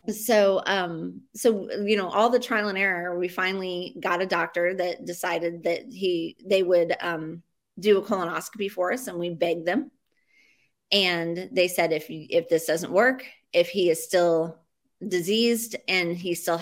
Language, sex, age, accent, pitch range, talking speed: English, female, 30-49, American, 175-220 Hz, 170 wpm